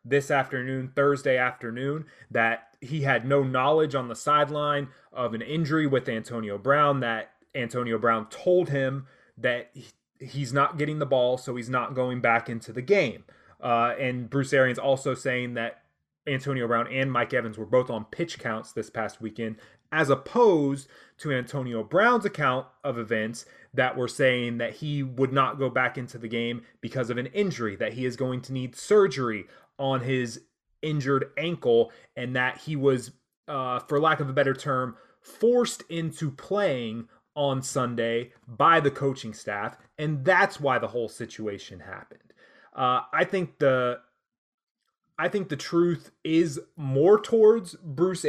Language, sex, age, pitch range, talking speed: English, male, 30-49, 125-155 Hz, 165 wpm